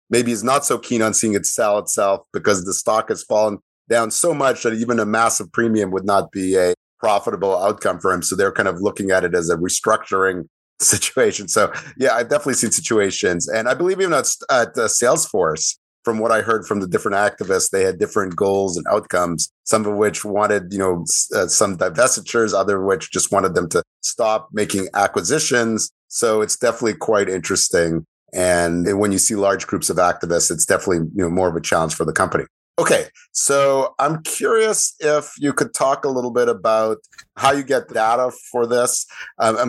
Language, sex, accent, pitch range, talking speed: English, male, American, 100-145 Hz, 200 wpm